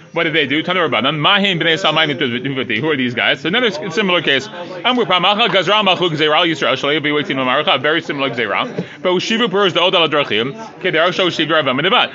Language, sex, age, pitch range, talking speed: English, male, 30-49, 150-195 Hz, 90 wpm